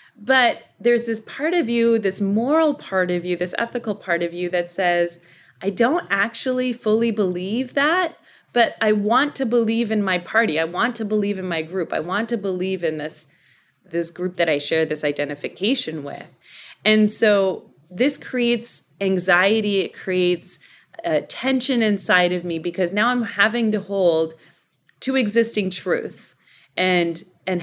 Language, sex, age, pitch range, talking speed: English, female, 20-39, 170-220 Hz, 165 wpm